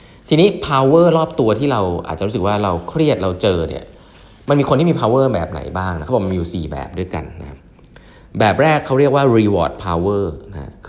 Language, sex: Thai, male